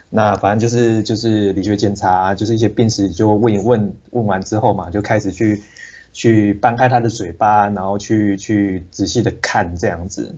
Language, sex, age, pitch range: Chinese, male, 20-39, 95-120 Hz